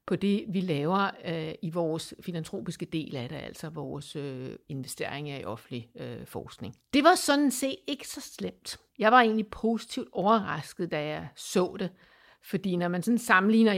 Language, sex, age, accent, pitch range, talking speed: Danish, female, 60-79, native, 175-230 Hz, 160 wpm